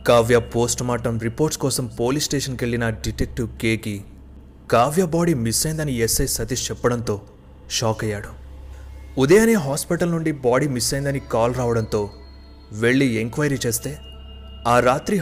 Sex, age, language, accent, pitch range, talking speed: male, 30-49, Telugu, native, 105-135 Hz, 115 wpm